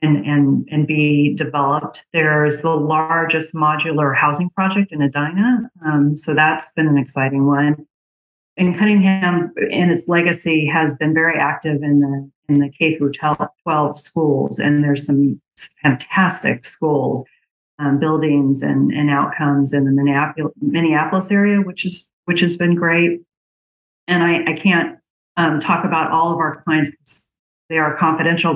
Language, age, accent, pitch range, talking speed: English, 40-59, American, 145-170 Hz, 150 wpm